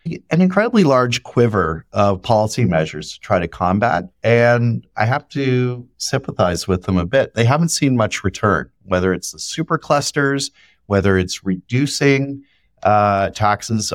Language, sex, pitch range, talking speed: English, male, 95-120 Hz, 150 wpm